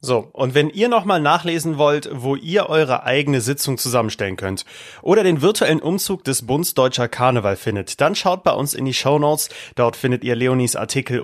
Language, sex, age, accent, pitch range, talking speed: German, male, 30-49, German, 115-140 Hz, 190 wpm